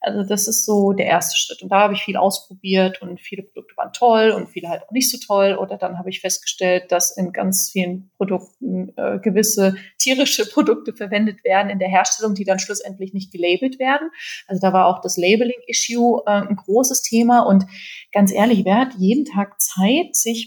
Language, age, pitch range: German, 30-49, 195-245 Hz